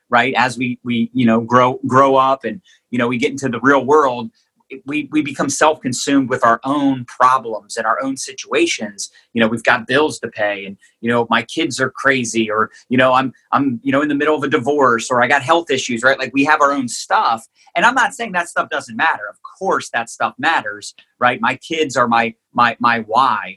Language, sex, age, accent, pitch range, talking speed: English, male, 30-49, American, 115-140 Hz, 230 wpm